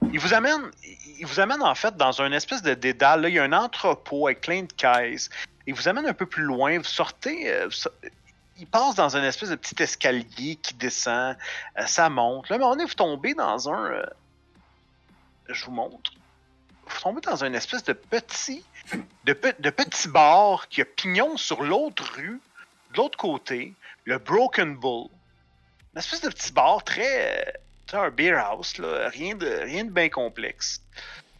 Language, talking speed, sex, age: French, 185 wpm, male, 40-59